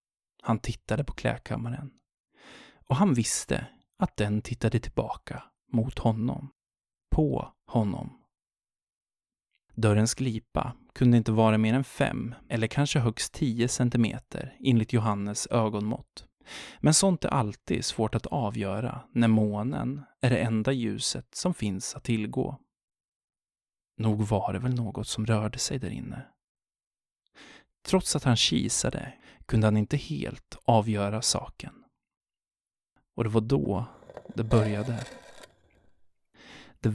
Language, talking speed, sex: Swedish, 120 wpm, male